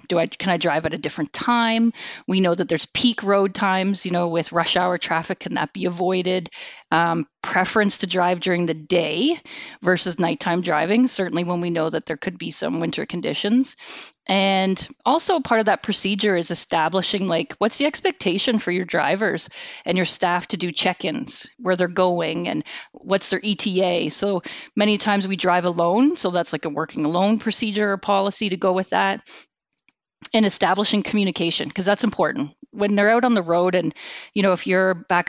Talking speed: 190 wpm